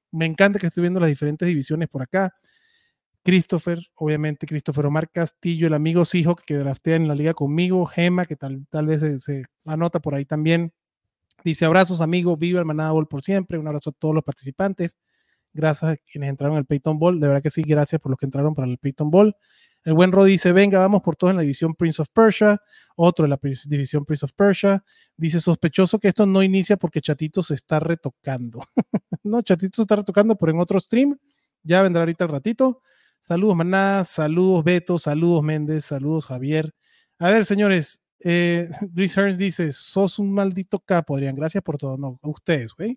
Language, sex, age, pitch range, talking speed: Spanish, male, 30-49, 150-185 Hz, 195 wpm